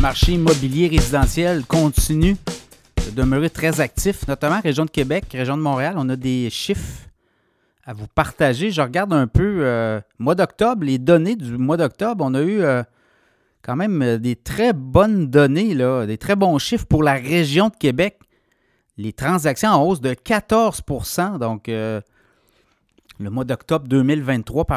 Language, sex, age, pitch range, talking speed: French, male, 30-49, 125-165 Hz, 160 wpm